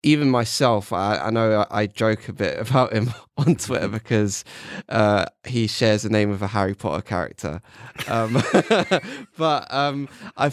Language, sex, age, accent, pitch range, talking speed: English, male, 20-39, British, 105-120 Hz, 160 wpm